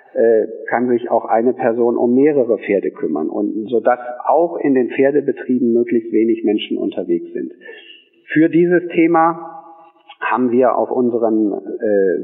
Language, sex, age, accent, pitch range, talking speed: German, male, 50-69, German, 120-185 Hz, 135 wpm